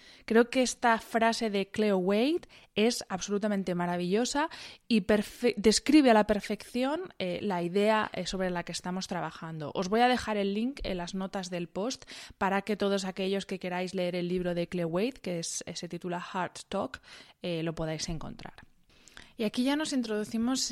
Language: Spanish